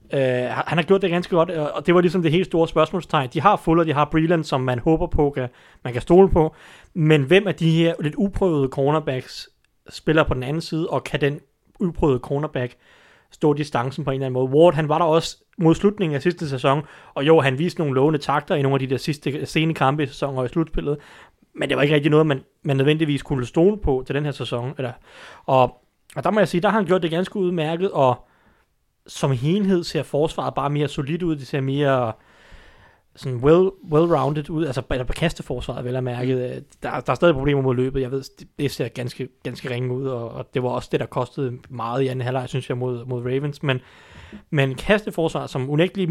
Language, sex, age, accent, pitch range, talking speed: Danish, male, 30-49, native, 130-165 Hz, 225 wpm